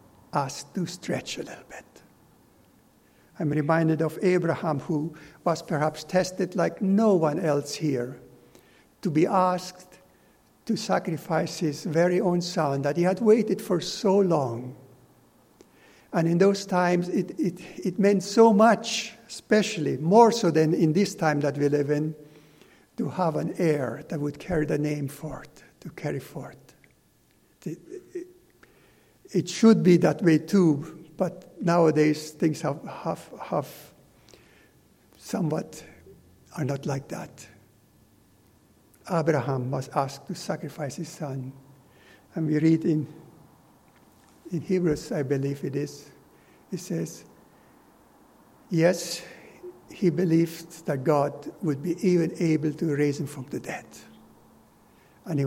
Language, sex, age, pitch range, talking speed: English, male, 60-79, 145-180 Hz, 135 wpm